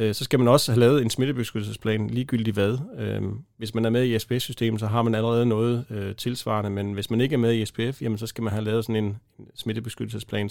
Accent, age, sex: native, 30-49, male